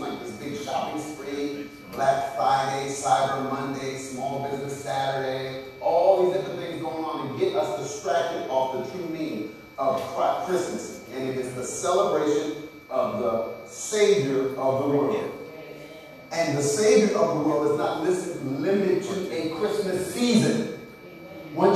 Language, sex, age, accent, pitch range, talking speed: English, male, 40-59, American, 165-230 Hz, 140 wpm